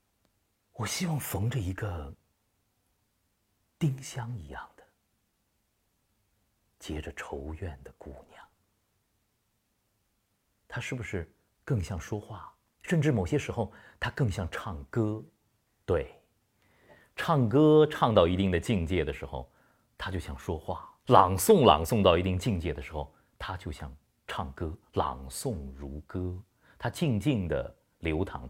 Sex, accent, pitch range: male, native, 75-105 Hz